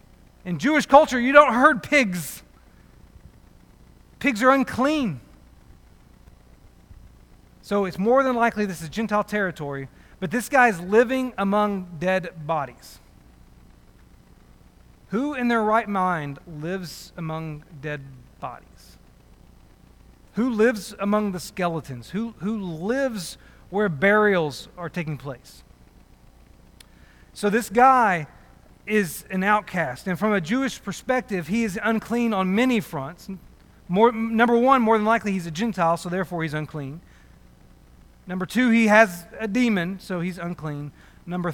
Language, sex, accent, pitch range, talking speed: English, male, American, 145-215 Hz, 125 wpm